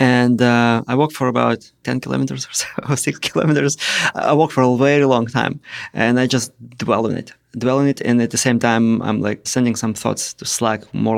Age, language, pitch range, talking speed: 30-49, English, 120-150 Hz, 225 wpm